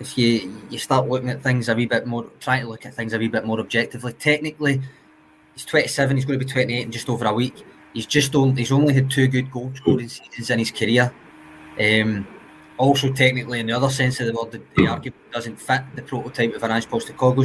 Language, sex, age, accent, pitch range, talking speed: English, male, 20-39, British, 115-135 Hz, 240 wpm